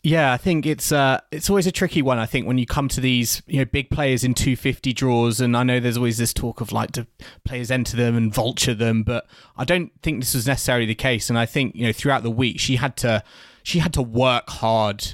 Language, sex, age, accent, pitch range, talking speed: English, male, 20-39, British, 115-135 Hz, 260 wpm